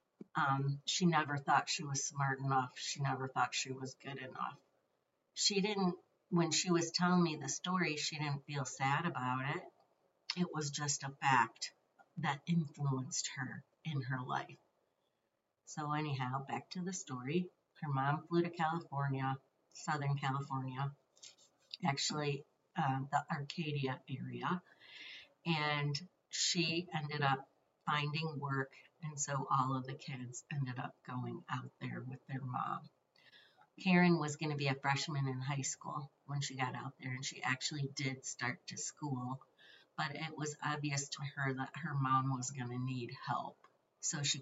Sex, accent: female, American